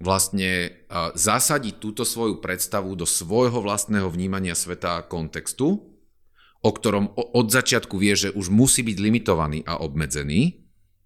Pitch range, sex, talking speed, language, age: 85-105 Hz, male, 130 wpm, Slovak, 40-59